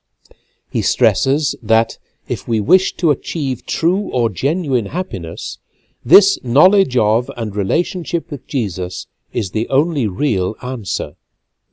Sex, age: male, 60-79